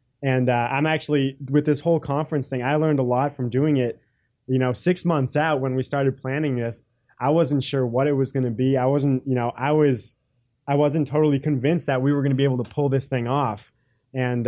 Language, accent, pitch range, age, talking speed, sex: English, American, 120-140 Hz, 20-39, 240 wpm, male